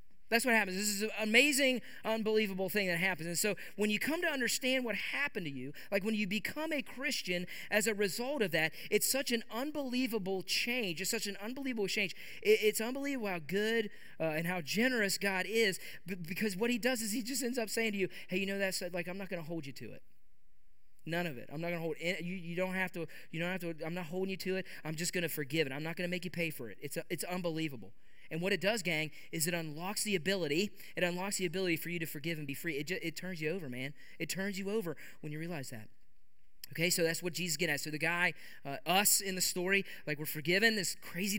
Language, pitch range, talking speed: English, 165-215 Hz, 255 wpm